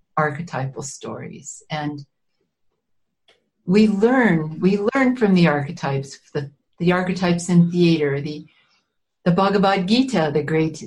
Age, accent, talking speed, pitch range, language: 60-79, American, 115 wpm, 160-195 Hz, English